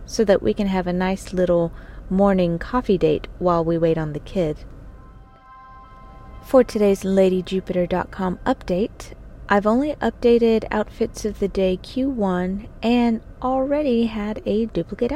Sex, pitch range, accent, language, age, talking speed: female, 175-225 Hz, American, English, 30-49, 135 wpm